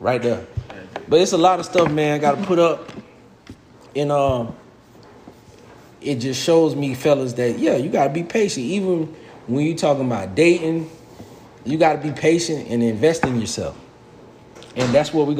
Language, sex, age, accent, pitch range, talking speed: English, male, 20-39, American, 115-155 Hz, 185 wpm